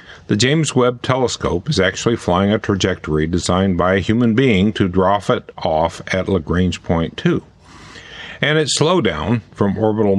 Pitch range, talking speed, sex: 90-115 Hz, 160 wpm, male